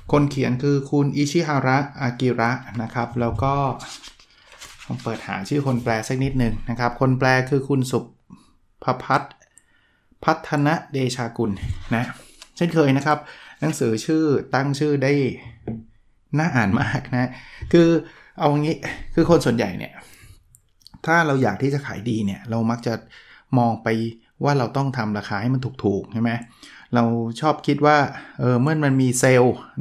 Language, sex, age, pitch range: Thai, male, 20-39, 115-145 Hz